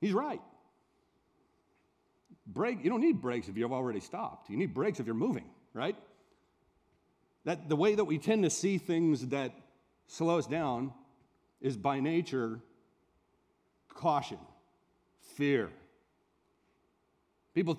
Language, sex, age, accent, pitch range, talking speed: English, male, 40-59, American, 145-200 Hz, 125 wpm